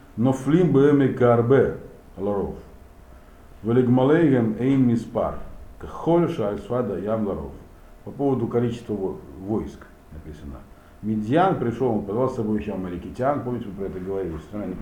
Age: 50-69